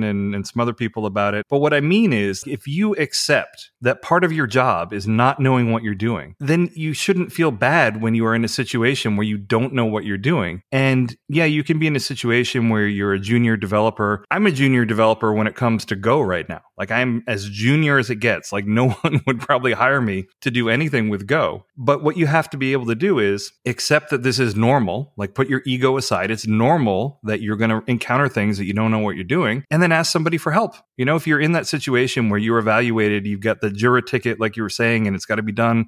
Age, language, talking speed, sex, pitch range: 30-49, English, 255 wpm, male, 110-135 Hz